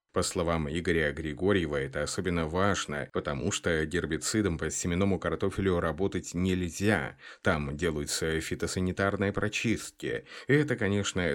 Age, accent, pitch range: 30-49, native, 80-105 Hz